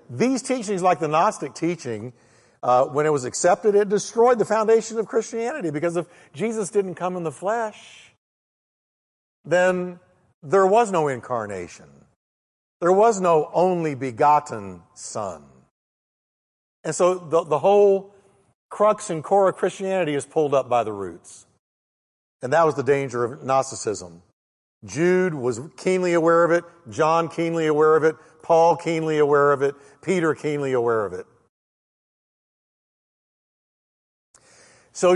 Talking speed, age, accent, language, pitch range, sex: 140 wpm, 50-69, American, English, 130-180 Hz, male